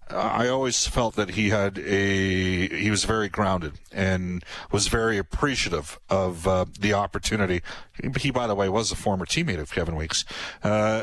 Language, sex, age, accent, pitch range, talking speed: English, male, 40-59, American, 100-130 Hz, 170 wpm